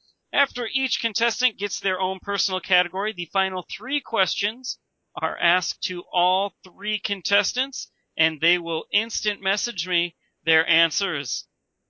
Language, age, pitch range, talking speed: English, 40-59, 165-210 Hz, 130 wpm